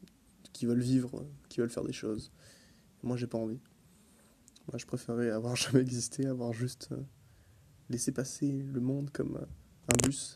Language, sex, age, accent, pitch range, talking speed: French, male, 20-39, French, 120-135 Hz, 160 wpm